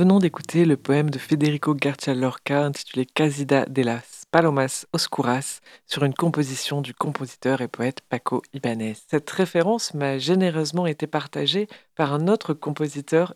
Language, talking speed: French, 145 wpm